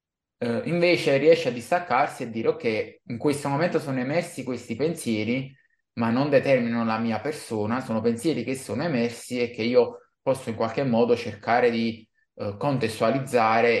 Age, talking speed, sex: 20-39, 150 wpm, male